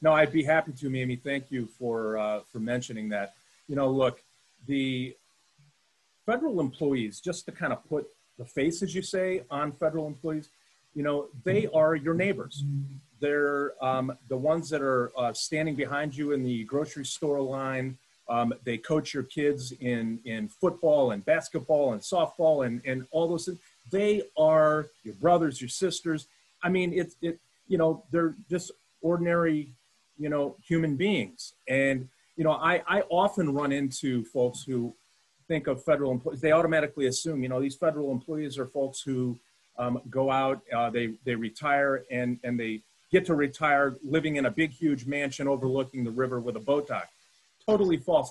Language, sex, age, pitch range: English, male, 40-59, 130-160 Hz